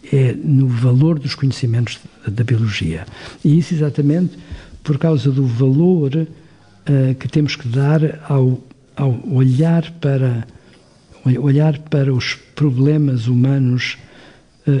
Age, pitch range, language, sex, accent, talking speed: 50-69, 125-150 Hz, Portuguese, male, Portuguese, 120 wpm